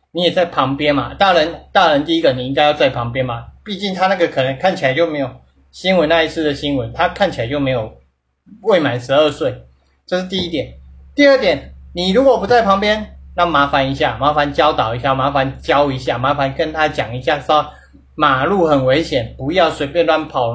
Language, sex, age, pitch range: Chinese, male, 30-49, 130-180 Hz